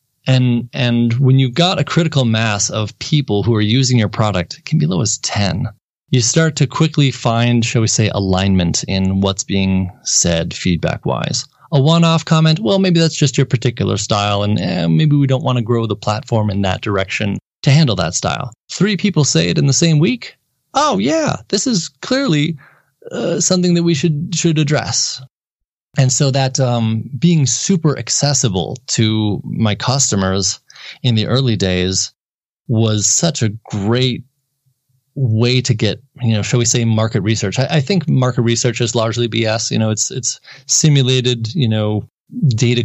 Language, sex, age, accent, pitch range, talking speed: English, male, 20-39, American, 110-145 Hz, 175 wpm